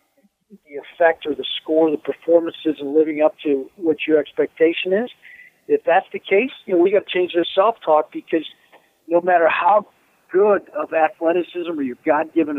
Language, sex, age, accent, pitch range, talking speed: English, male, 50-69, American, 150-195 Hz, 175 wpm